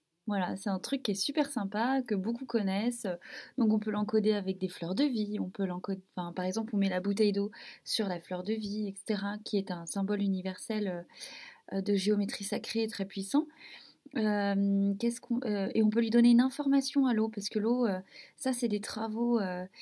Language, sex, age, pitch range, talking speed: French, female, 20-39, 200-245 Hz, 205 wpm